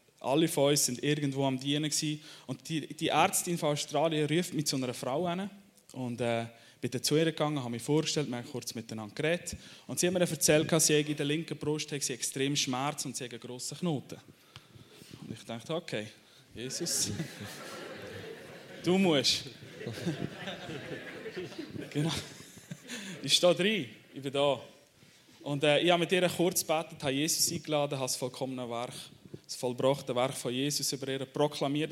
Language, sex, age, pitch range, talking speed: German, male, 20-39, 125-160 Hz, 175 wpm